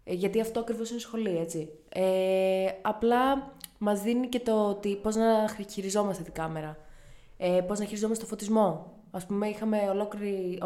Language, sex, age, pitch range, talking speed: Greek, female, 20-39, 175-230 Hz, 140 wpm